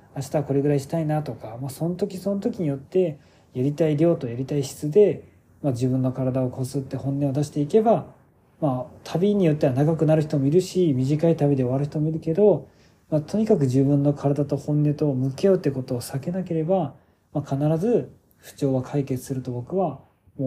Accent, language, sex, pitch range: native, Japanese, male, 130-160 Hz